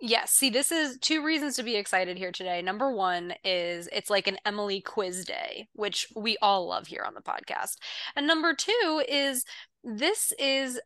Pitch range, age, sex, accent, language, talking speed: 200-260 Hz, 20-39, female, American, English, 190 wpm